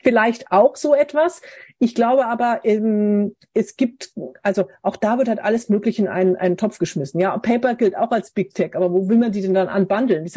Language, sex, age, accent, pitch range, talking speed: English, female, 40-59, German, 195-240 Hz, 225 wpm